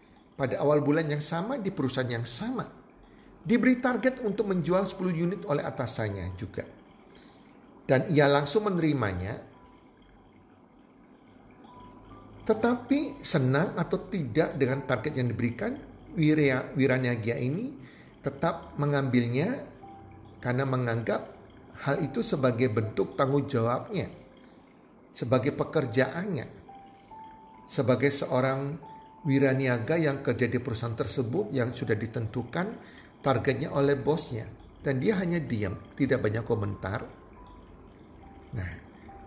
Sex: male